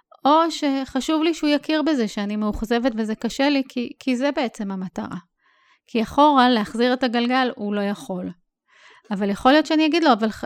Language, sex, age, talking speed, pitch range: English, female, 30-49, 170 wpm, 205-265 Hz